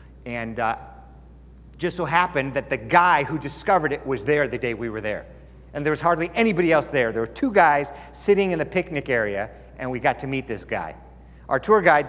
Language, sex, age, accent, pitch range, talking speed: English, male, 50-69, American, 105-180 Hz, 225 wpm